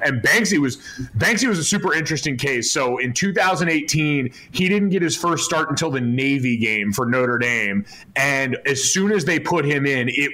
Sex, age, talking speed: male, 30-49, 195 wpm